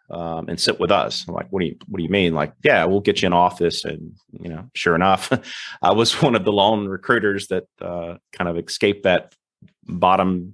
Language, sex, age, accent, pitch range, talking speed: English, male, 30-49, American, 85-100 Hz, 235 wpm